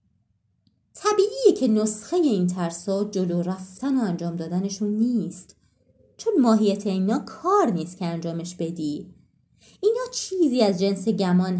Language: Persian